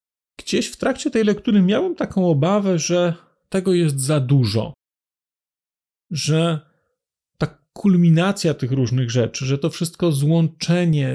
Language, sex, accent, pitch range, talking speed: Polish, male, native, 145-180 Hz, 125 wpm